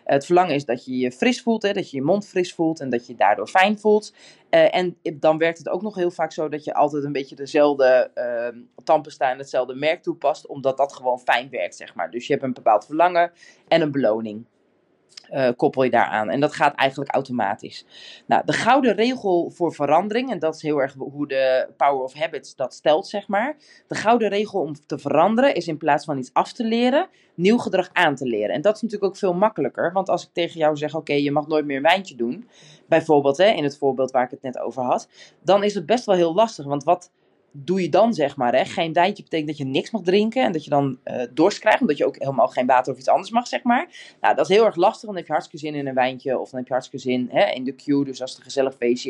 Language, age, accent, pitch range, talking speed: Dutch, 20-39, Dutch, 135-190 Hz, 260 wpm